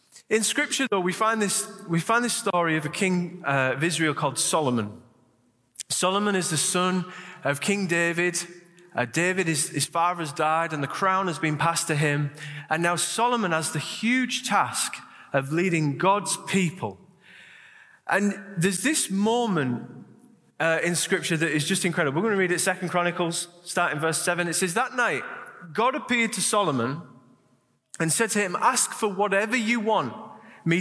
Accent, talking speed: British, 175 wpm